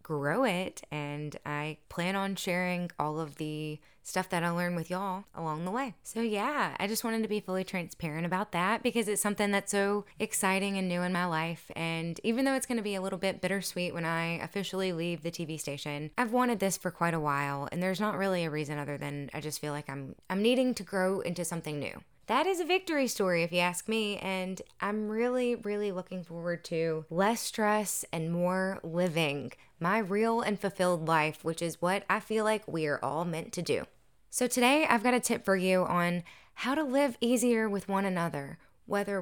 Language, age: English, 20-39